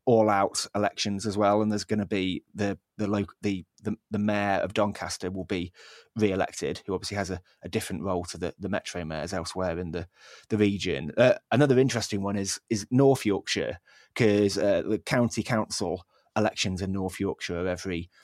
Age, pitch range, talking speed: 20-39, 95-105 Hz, 195 wpm